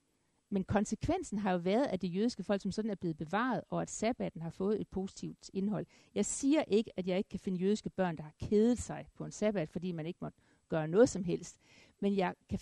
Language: Danish